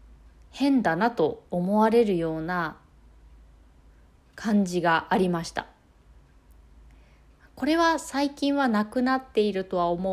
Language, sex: Japanese, female